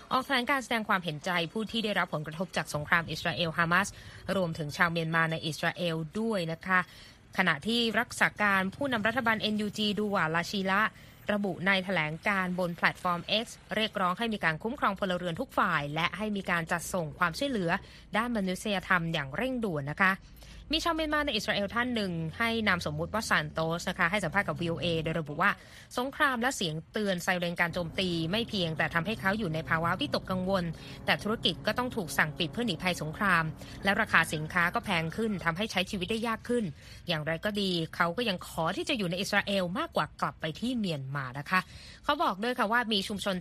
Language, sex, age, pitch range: Thai, female, 20-39, 170-215 Hz